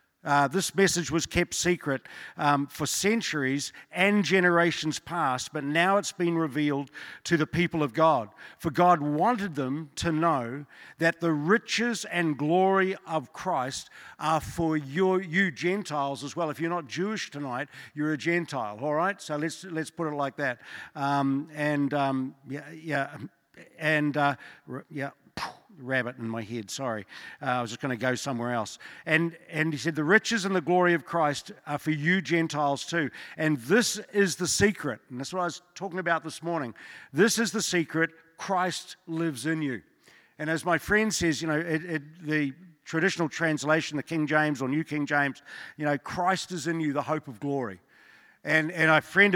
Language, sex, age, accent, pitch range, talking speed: English, male, 50-69, Australian, 145-175 Hz, 185 wpm